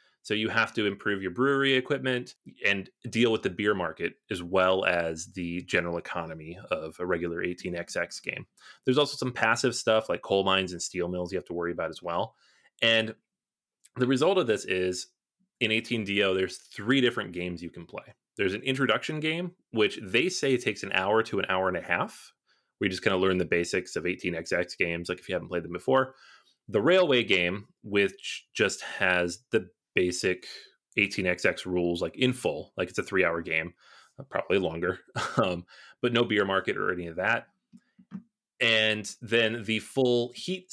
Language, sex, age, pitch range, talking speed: English, male, 30-49, 90-125 Hz, 185 wpm